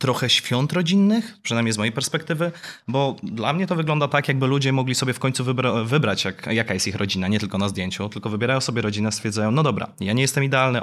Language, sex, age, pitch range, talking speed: Polish, male, 20-39, 110-145 Hz, 220 wpm